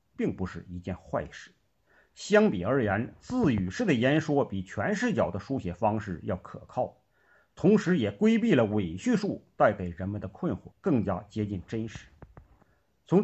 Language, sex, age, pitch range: Chinese, male, 50-69, 95-150 Hz